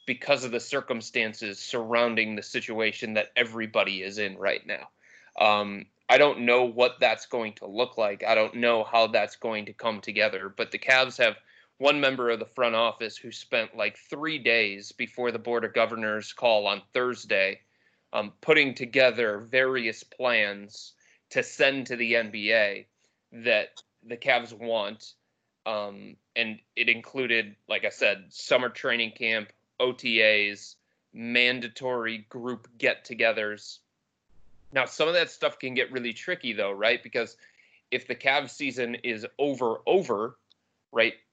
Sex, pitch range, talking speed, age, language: male, 110-125 Hz, 150 wpm, 20-39, English